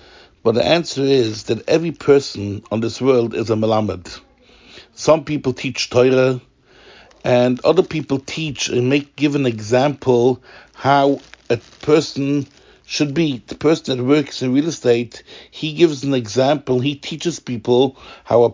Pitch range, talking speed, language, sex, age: 125-155 Hz, 150 wpm, English, male, 60-79